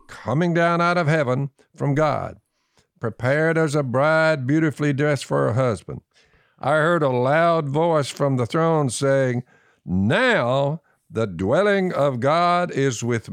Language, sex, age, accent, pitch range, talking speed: English, male, 60-79, American, 110-165 Hz, 145 wpm